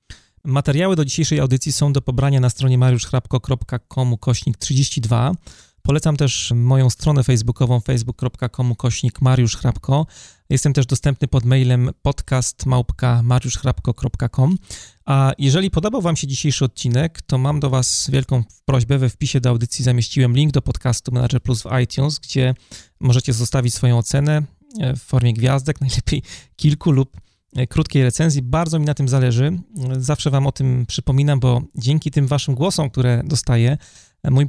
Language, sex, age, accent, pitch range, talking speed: Polish, male, 30-49, native, 125-145 Hz, 135 wpm